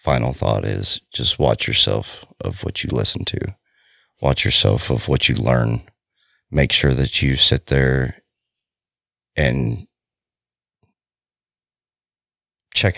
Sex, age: male, 30-49